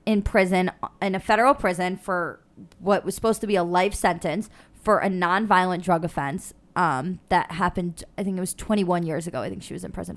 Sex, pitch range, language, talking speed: female, 180-215 Hz, English, 210 wpm